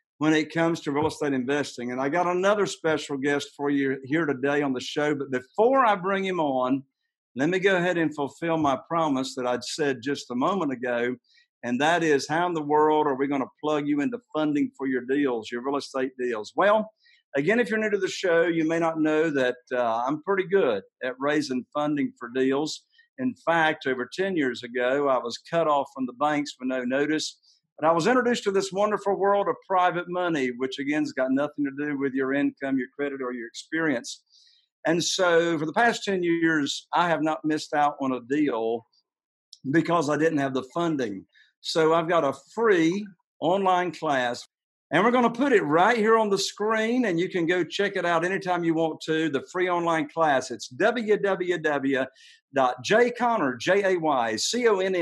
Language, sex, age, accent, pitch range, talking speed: English, male, 50-69, American, 140-190 Hz, 205 wpm